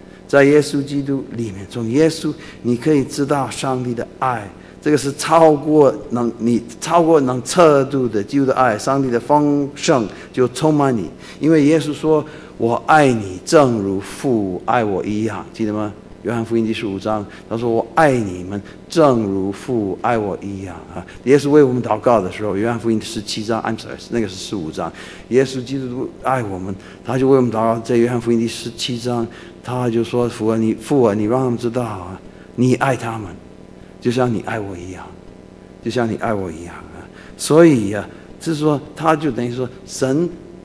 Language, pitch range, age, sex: Chinese, 105-140 Hz, 50-69, male